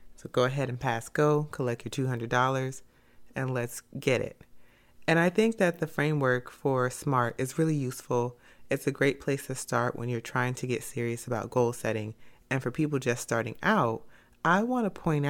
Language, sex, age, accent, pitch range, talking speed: English, female, 30-49, American, 115-140 Hz, 190 wpm